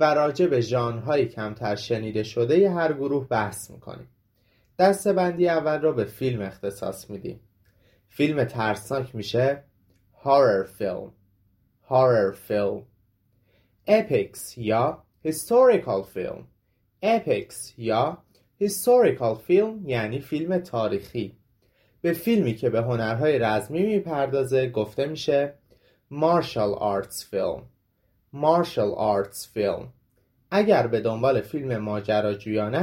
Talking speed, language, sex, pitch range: 100 wpm, Persian, male, 110-165 Hz